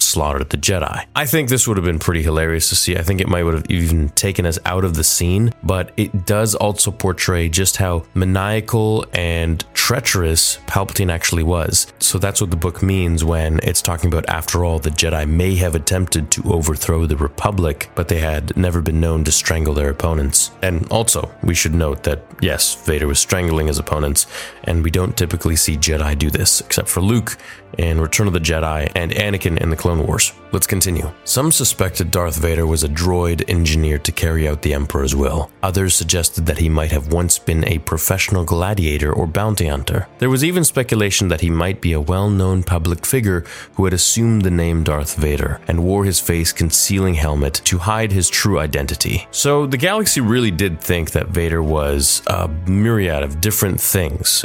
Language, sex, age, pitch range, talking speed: English, male, 30-49, 80-100 Hz, 195 wpm